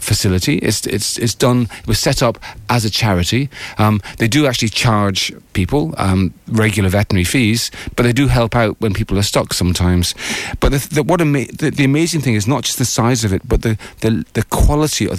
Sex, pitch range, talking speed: male, 100-125 Hz, 215 wpm